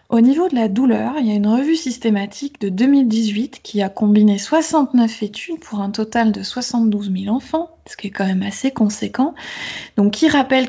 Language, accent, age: French, French, 20-39